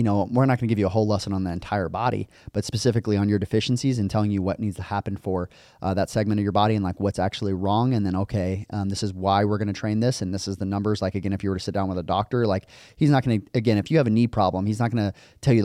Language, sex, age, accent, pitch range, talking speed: English, male, 20-39, American, 95-110 Hz, 325 wpm